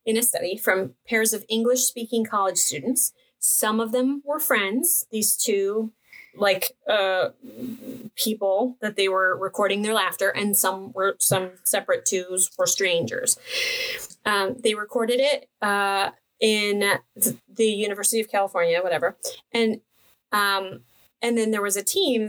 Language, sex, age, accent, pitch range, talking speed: English, female, 30-49, American, 195-245 Hz, 145 wpm